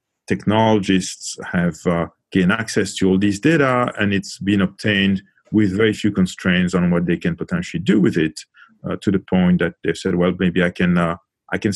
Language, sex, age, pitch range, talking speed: English, male, 40-59, 90-110 Hz, 200 wpm